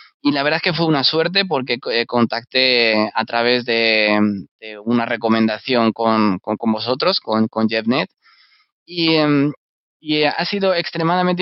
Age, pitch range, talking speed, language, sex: 20-39, 115-140 Hz, 145 wpm, Spanish, male